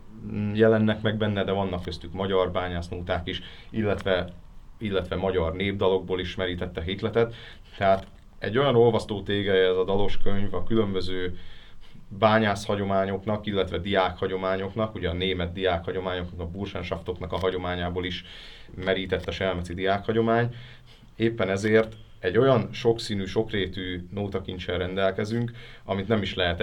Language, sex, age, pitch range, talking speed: Hungarian, male, 30-49, 90-110 Hz, 120 wpm